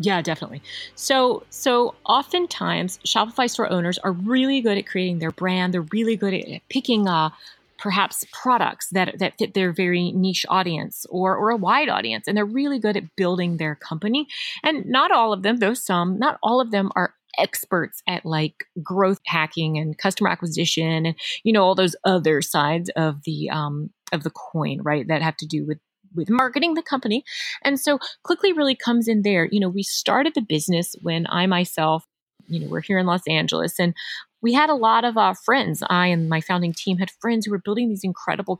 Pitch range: 170-230 Hz